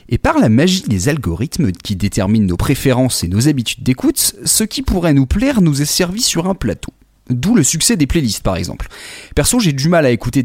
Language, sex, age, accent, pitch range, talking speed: French, male, 30-49, French, 110-160 Hz, 220 wpm